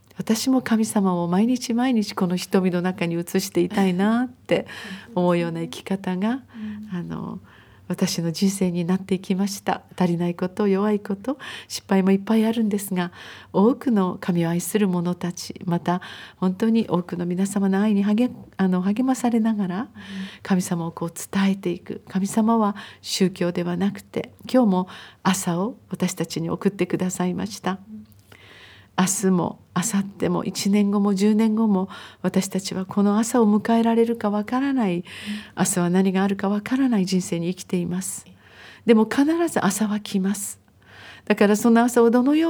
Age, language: 40-59, Japanese